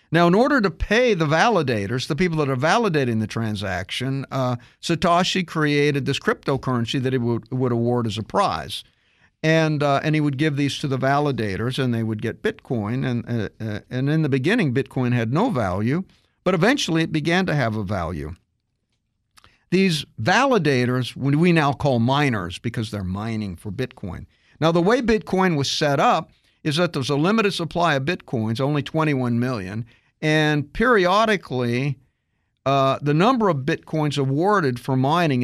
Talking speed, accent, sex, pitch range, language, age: 170 wpm, American, male, 120-165 Hz, English, 50-69